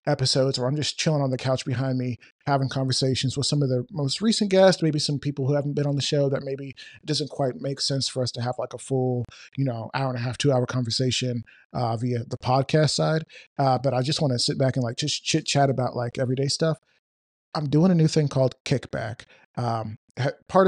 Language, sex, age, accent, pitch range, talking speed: English, male, 30-49, American, 120-140 Hz, 240 wpm